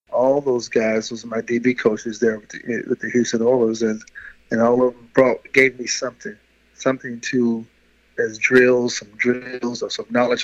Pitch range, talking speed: 110-125 Hz, 170 wpm